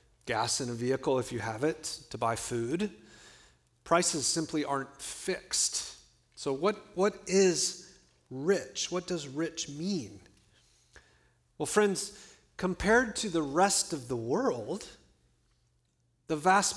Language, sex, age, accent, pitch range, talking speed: English, male, 40-59, American, 125-175 Hz, 125 wpm